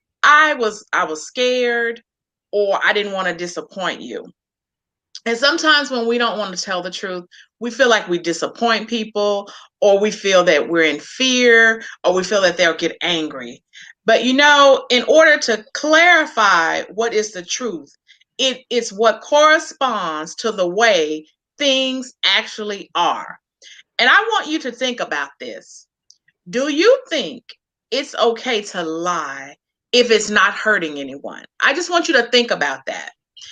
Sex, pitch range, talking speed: female, 195-270 Hz, 160 wpm